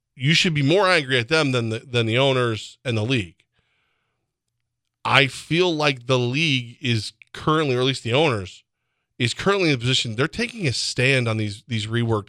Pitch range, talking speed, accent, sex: 115-150 Hz, 195 wpm, American, male